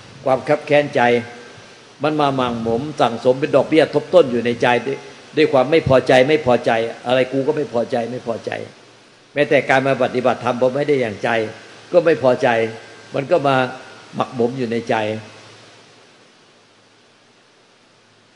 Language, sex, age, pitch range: Thai, male, 60-79, 120-140 Hz